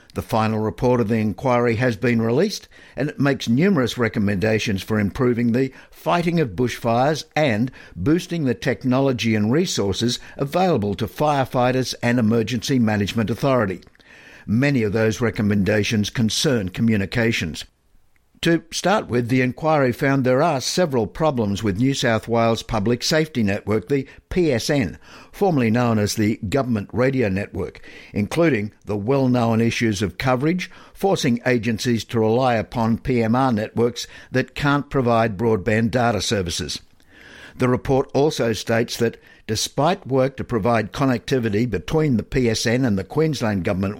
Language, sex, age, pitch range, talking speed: English, male, 60-79, 110-135 Hz, 140 wpm